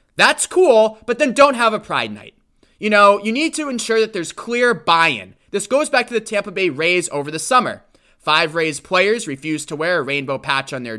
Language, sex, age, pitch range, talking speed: English, male, 20-39, 160-220 Hz, 225 wpm